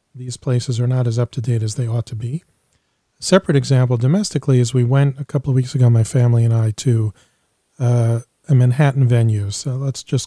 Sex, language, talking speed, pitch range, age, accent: male, English, 205 wpm, 120-140 Hz, 40-59, American